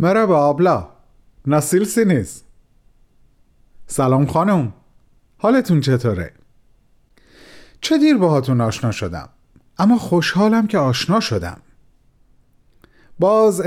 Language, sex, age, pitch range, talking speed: Persian, male, 40-59, 130-185 Hz, 85 wpm